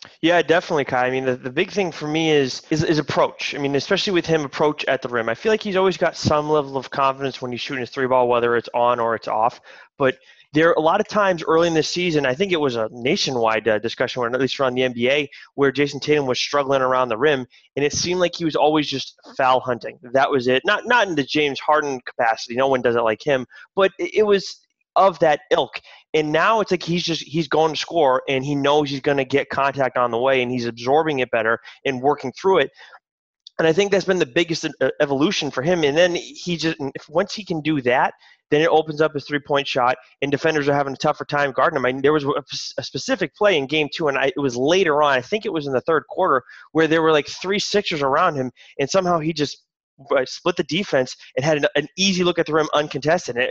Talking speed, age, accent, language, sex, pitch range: 250 wpm, 20-39, American, English, male, 130-165 Hz